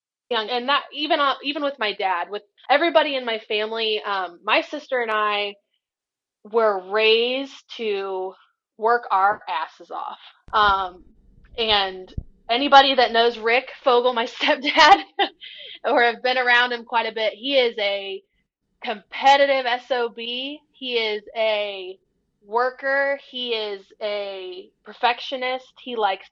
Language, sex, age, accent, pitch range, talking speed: English, female, 20-39, American, 205-260 Hz, 130 wpm